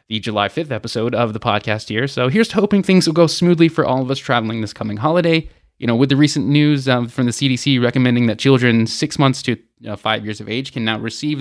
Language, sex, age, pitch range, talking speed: English, male, 20-39, 115-150 Hz, 245 wpm